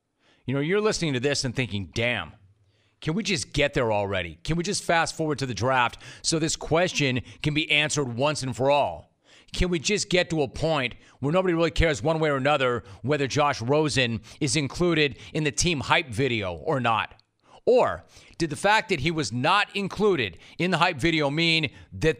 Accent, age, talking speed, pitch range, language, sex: American, 40-59, 205 wpm, 115-170 Hz, English, male